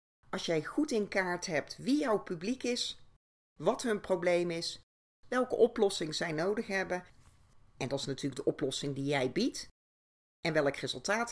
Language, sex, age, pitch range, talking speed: Dutch, female, 40-59, 145-200 Hz, 165 wpm